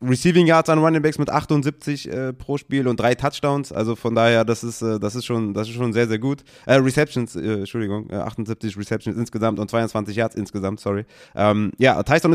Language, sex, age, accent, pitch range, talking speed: German, male, 20-39, German, 110-140 Hz, 215 wpm